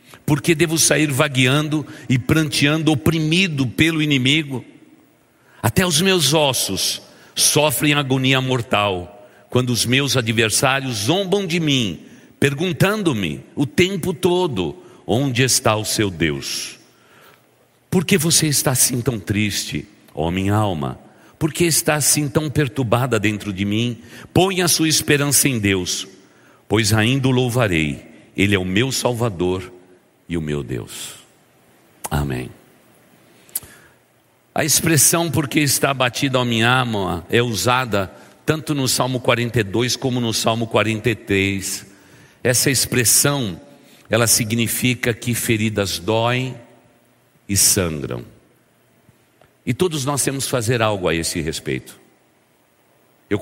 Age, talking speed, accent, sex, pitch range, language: 60-79, 125 wpm, Brazilian, male, 105-145 Hz, Portuguese